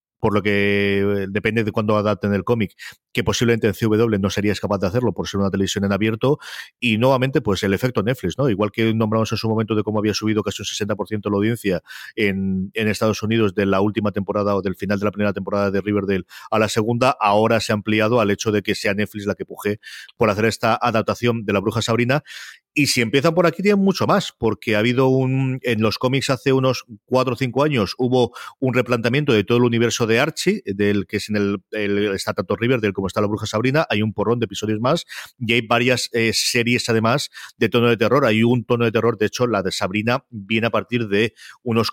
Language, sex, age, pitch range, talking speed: Spanish, male, 40-59, 100-120 Hz, 235 wpm